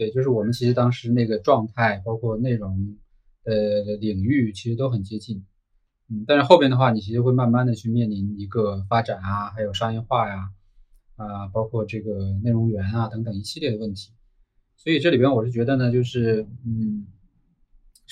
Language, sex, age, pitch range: Chinese, male, 20-39, 105-125 Hz